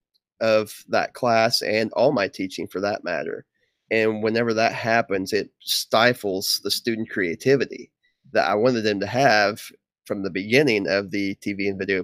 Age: 30-49